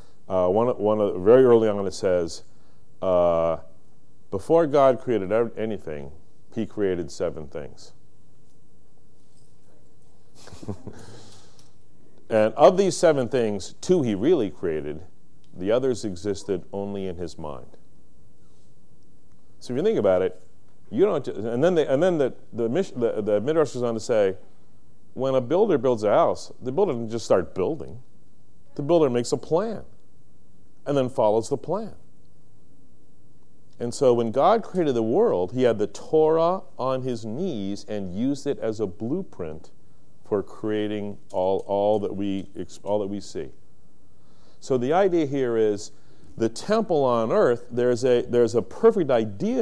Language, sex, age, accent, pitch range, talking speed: English, male, 40-59, American, 100-140 Hz, 150 wpm